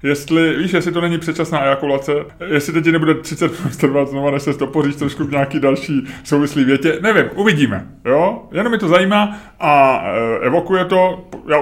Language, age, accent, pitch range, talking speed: Czech, 30-49, native, 120-160 Hz, 175 wpm